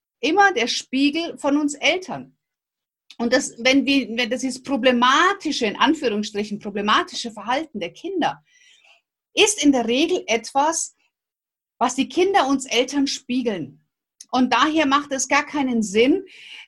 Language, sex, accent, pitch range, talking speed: German, female, German, 235-320 Hz, 135 wpm